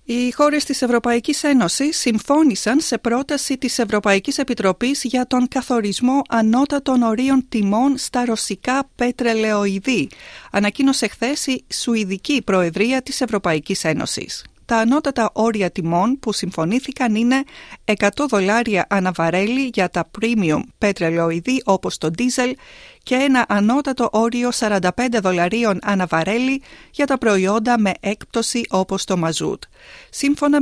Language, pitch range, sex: Greek, 205-270 Hz, female